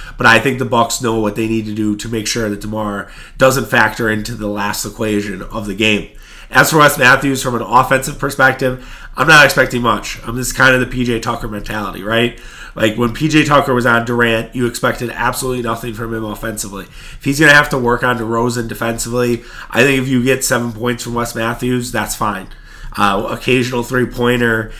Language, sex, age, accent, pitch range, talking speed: English, male, 30-49, American, 110-130 Hz, 205 wpm